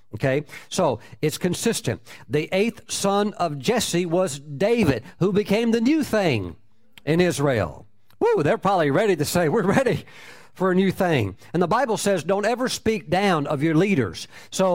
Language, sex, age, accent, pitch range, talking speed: English, male, 50-69, American, 125-200 Hz, 170 wpm